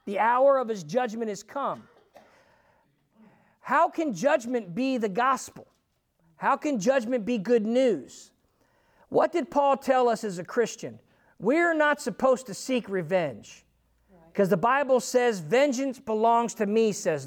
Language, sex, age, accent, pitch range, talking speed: English, male, 50-69, American, 225-280 Hz, 145 wpm